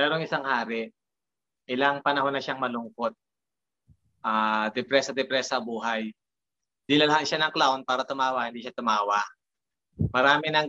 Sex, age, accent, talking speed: male, 20-39, native, 135 wpm